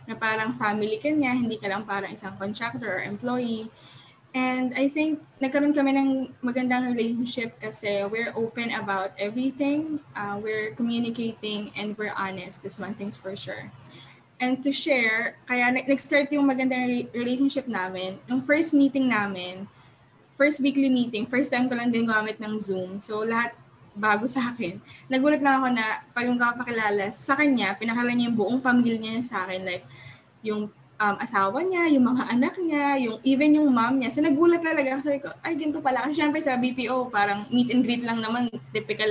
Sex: female